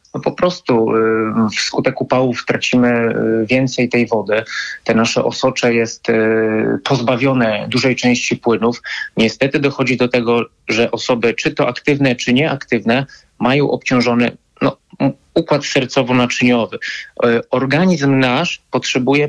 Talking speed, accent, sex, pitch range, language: 105 wpm, native, male, 120-135 Hz, Polish